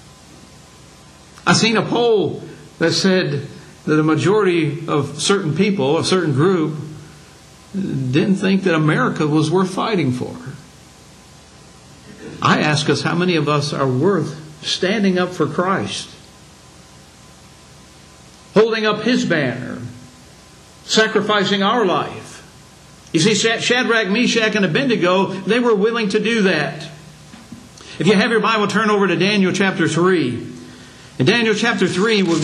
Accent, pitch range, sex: American, 165-210 Hz, male